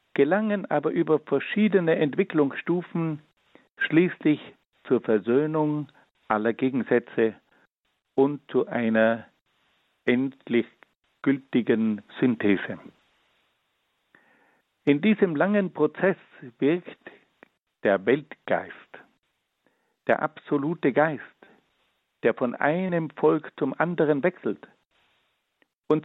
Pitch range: 125-165 Hz